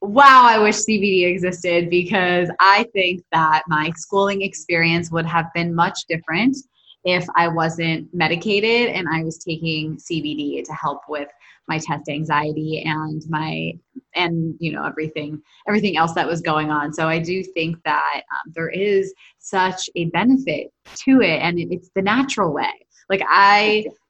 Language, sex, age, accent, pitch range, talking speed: English, female, 20-39, American, 160-195 Hz, 160 wpm